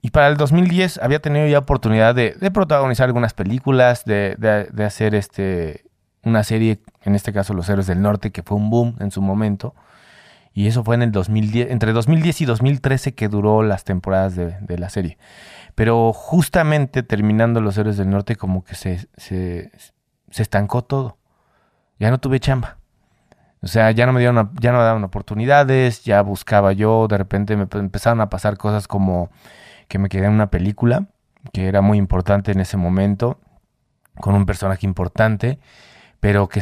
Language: Spanish